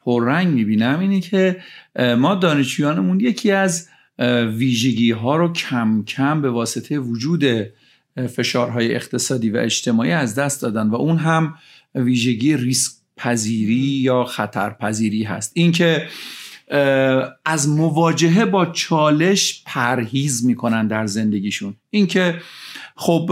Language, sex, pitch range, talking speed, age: Persian, male, 120-160 Hz, 115 wpm, 50-69